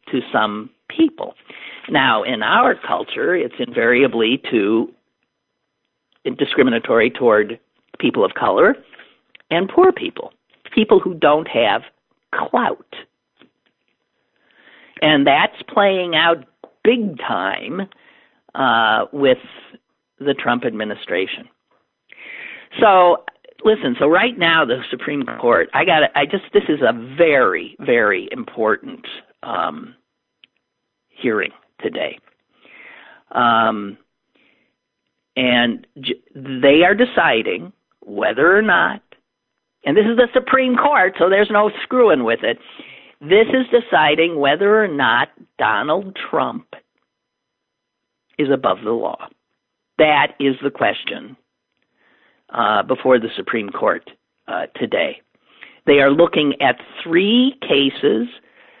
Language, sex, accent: English, male, American